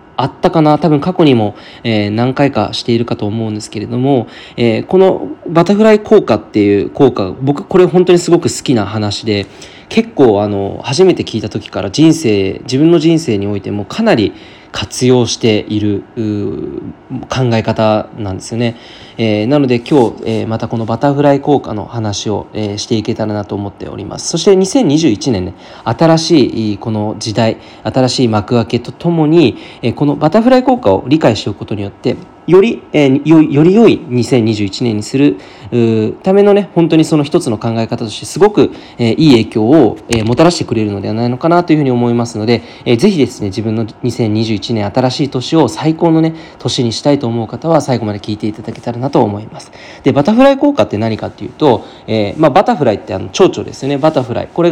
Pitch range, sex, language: 105-150 Hz, male, Japanese